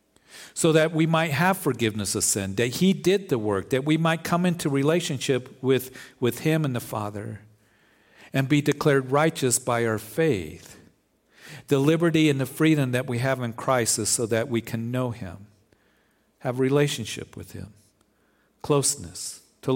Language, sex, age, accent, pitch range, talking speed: English, male, 50-69, American, 110-145 Hz, 165 wpm